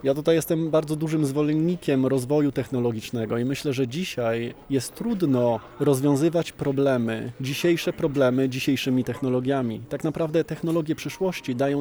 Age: 20-39